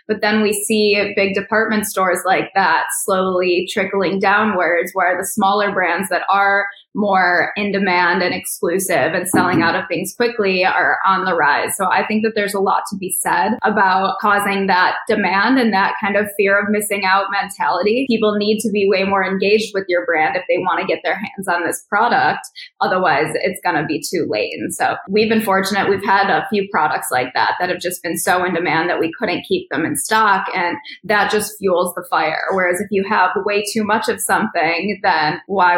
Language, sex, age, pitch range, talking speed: English, female, 10-29, 185-220 Hz, 210 wpm